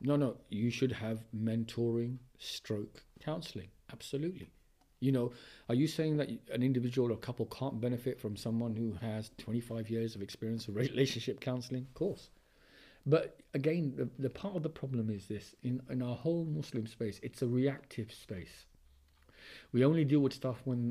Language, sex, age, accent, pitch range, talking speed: English, male, 40-59, British, 110-140 Hz, 175 wpm